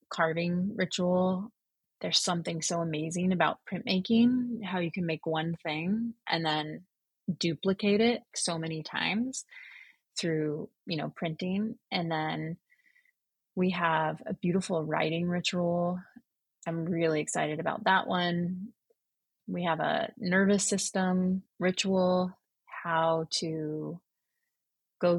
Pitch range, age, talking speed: 160-195 Hz, 30-49, 115 wpm